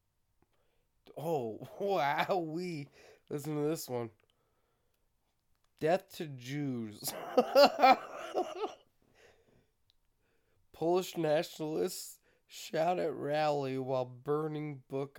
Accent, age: American, 20-39